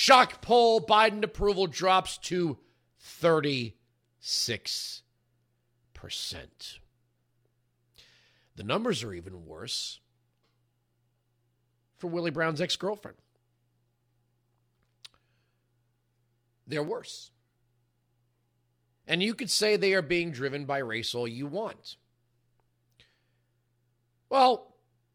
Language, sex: English, male